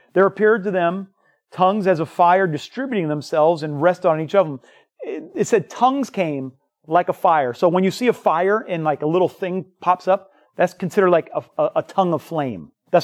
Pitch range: 160-210 Hz